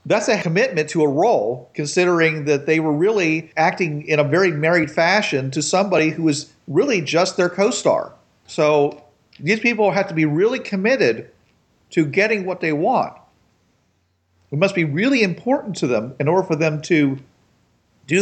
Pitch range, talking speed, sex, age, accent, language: 150-185 Hz, 170 wpm, male, 50-69, American, English